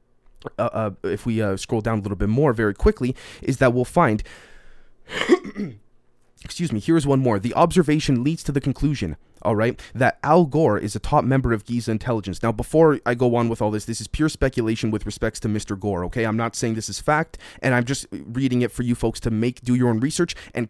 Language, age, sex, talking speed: English, 20-39, male, 230 wpm